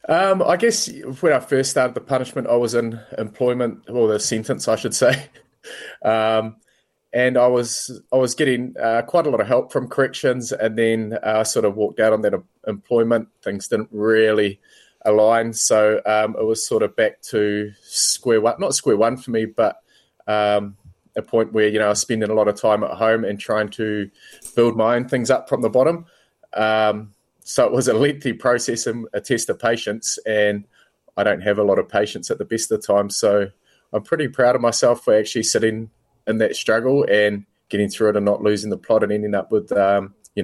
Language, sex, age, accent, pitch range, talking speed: English, male, 20-39, Australian, 105-120 Hz, 215 wpm